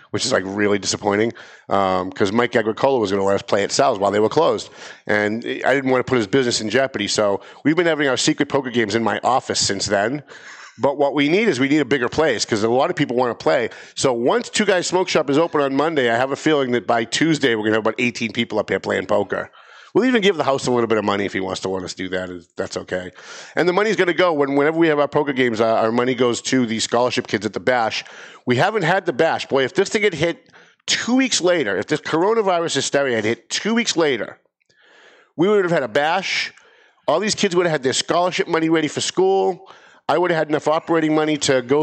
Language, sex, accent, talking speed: English, male, American, 265 wpm